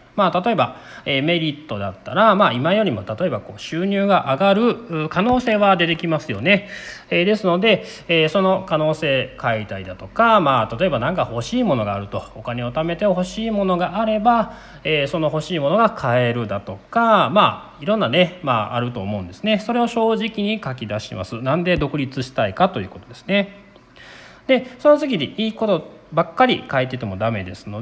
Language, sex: Japanese, male